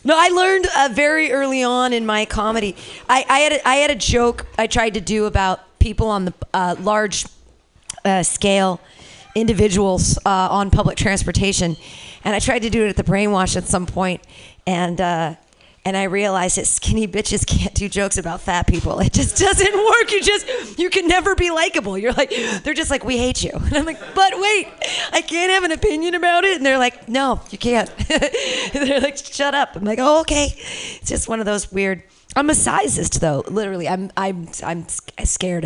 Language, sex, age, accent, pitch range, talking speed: English, female, 40-59, American, 190-300 Hz, 205 wpm